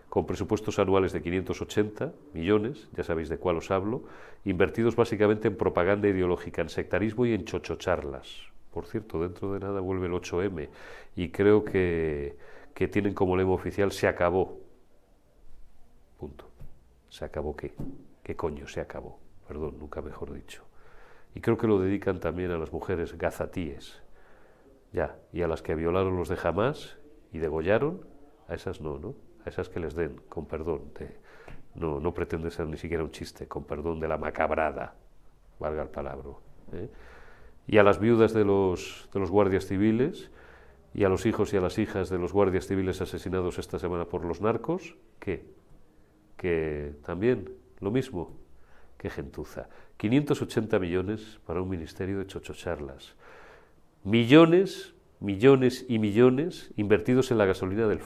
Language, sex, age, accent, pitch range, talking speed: Spanish, male, 40-59, Spanish, 85-105 Hz, 160 wpm